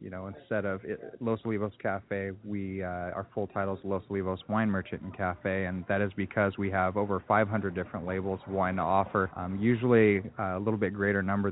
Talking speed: 205 wpm